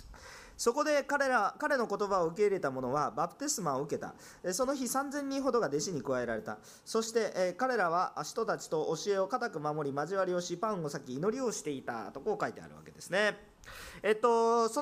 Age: 40-59